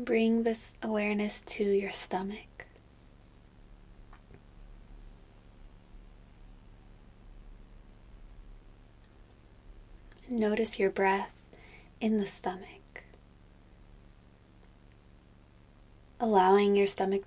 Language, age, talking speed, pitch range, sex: English, 20-39, 50 wpm, 190-210 Hz, female